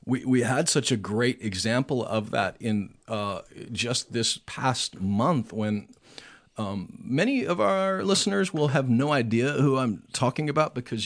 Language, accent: English, American